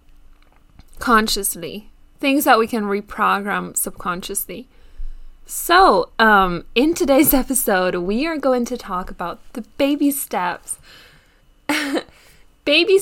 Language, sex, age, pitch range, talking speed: English, female, 20-39, 195-260 Hz, 100 wpm